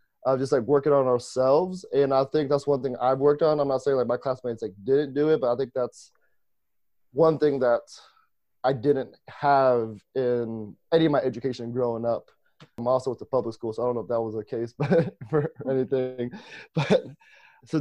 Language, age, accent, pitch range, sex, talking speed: English, 20-39, American, 125-145 Hz, male, 210 wpm